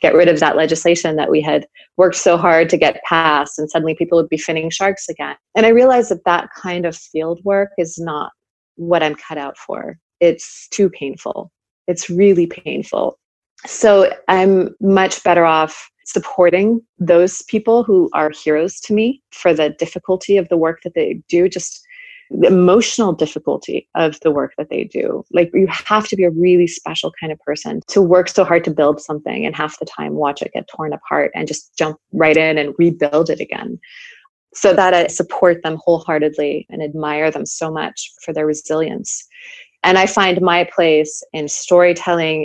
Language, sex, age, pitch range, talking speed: English, female, 30-49, 155-185 Hz, 190 wpm